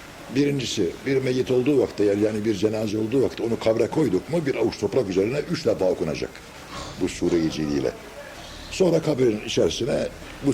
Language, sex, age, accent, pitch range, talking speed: Turkish, male, 60-79, native, 110-155 Hz, 160 wpm